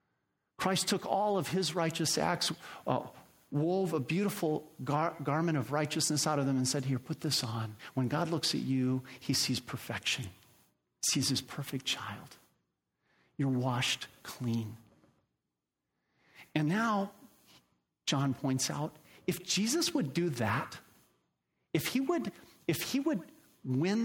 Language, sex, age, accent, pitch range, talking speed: English, male, 50-69, American, 130-195 Hz, 135 wpm